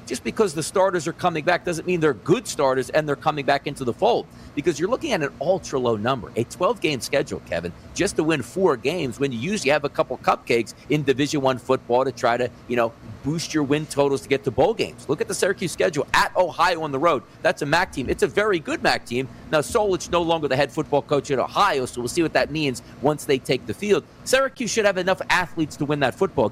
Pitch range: 140-210 Hz